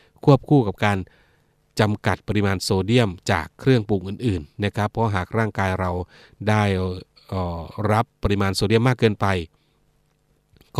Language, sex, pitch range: Thai, male, 95-115 Hz